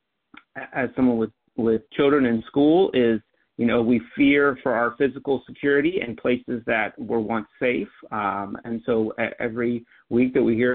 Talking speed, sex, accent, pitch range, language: 165 wpm, male, American, 115-135 Hz, English